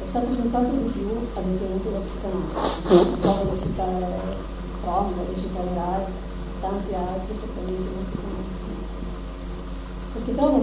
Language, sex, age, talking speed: Italian, female, 30-49, 125 wpm